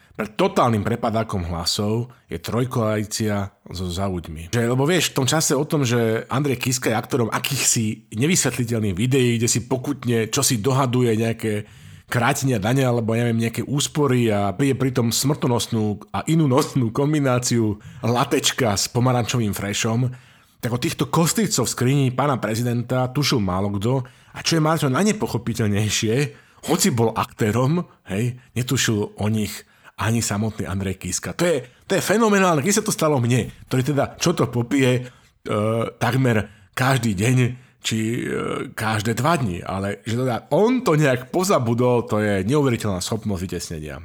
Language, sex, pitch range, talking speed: Slovak, male, 110-135 Hz, 150 wpm